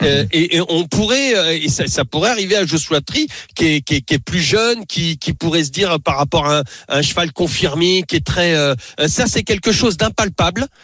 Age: 40-59